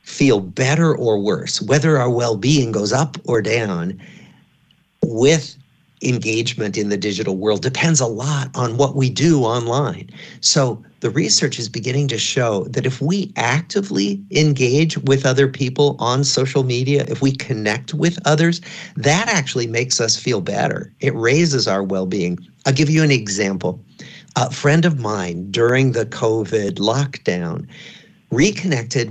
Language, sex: English, male